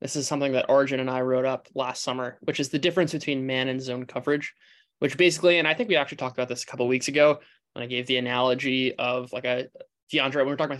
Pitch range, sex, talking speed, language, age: 125-145 Hz, male, 265 wpm, English, 20-39